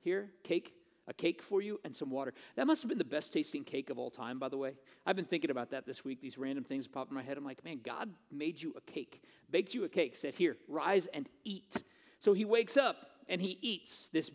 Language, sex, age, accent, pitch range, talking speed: English, male, 40-59, American, 175-260 Hz, 260 wpm